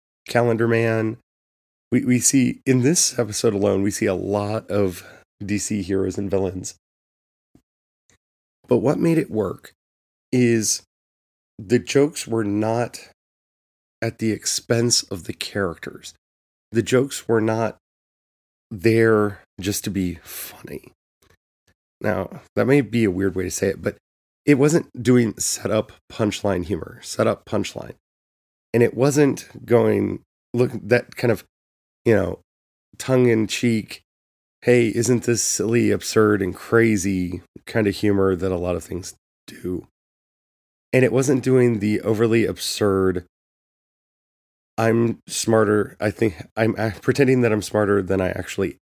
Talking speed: 135 wpm